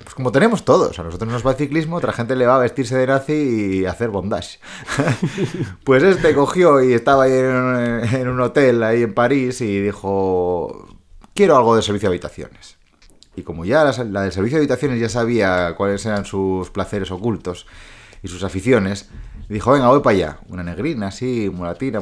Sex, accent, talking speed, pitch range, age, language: male, Spanish, 190 wpm, 95-125 Hz, 30-49, Spanish